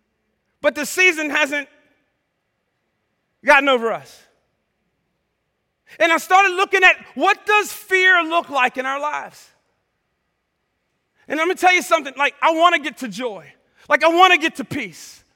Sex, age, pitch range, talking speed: male, 40-59, 295-360 Hz, 155 wpm